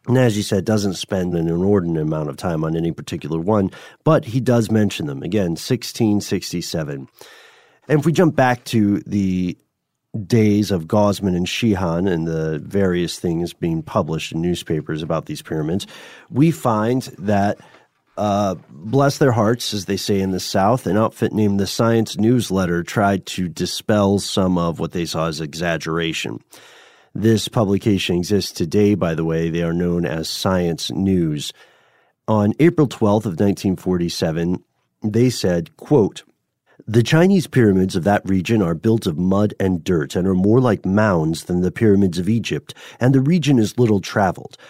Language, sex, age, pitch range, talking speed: English, male, 40-59, 90-115 Hz, 165 wpm